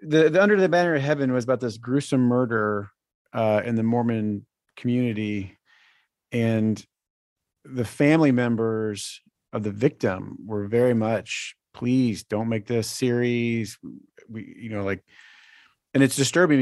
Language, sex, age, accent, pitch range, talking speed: English, male, 40-59, American, 110-145 Hz, 140 wpm